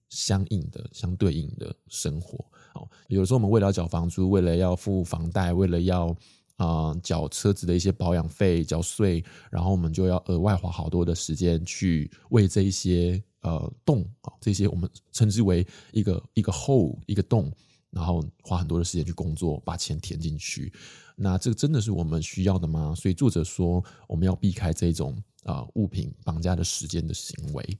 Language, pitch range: Chinese, 85-110 Hz